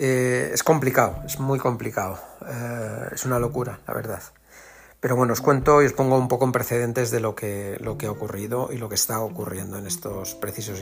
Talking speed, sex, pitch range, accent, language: 205 wpm, male, 110-135 Hz, Spanish, Spanish